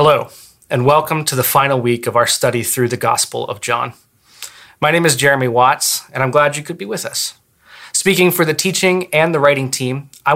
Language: English